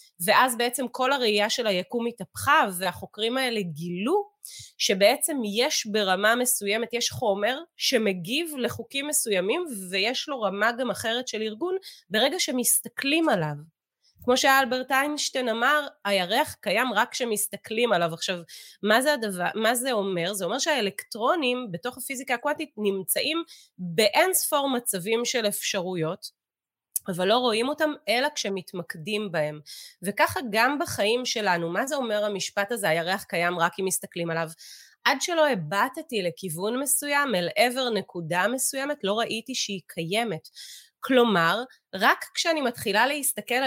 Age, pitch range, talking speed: 30-49, 190-260 Hz, 130 wpm